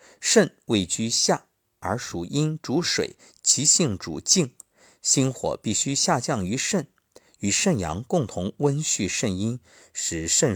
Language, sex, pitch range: Chinese, male, 95-160 Hz